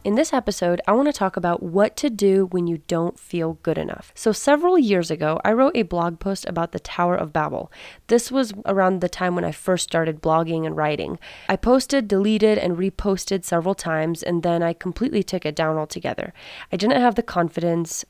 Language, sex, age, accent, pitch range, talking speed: English, female, 20-39, American, 170-215 Hz, 210 wpm